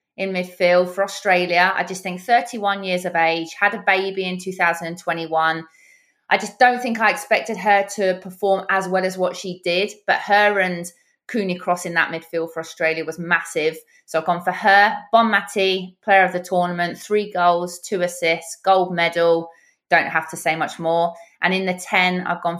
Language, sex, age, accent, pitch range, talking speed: English, female, 20-39, British, 175-210 Hz, 190 wpm